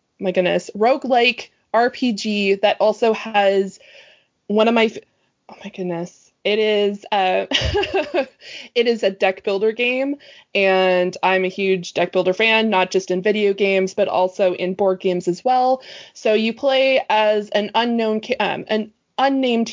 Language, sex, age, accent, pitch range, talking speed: English, female, 20-39, American, 195-235 Hz, 160 wpm